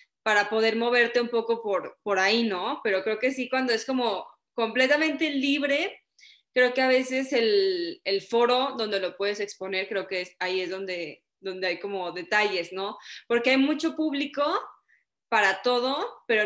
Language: Spanish